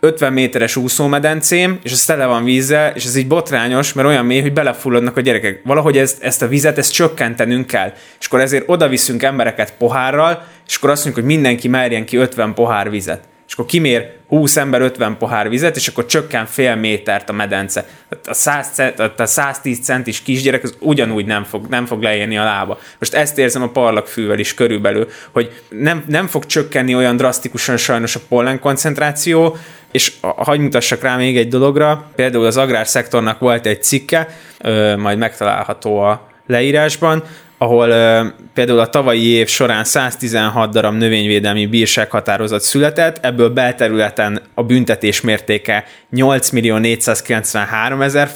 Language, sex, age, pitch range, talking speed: Hungarian, male, 20-39, 115-145 Hz, 155 wpm